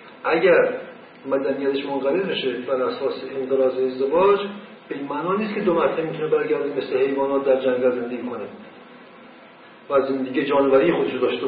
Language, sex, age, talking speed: Persian, male, 50-69, 150 wpm